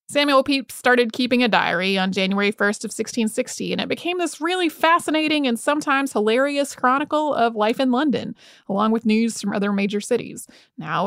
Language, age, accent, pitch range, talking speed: English, 30-49, American, 220-285 Hz, 180 wpm